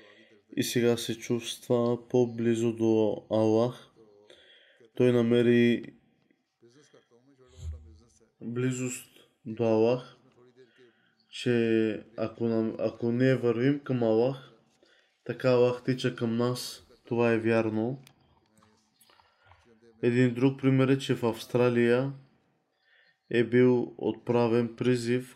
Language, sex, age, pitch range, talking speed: Bulgarian, male, 20-39, 115-125 Hz, 90 wpm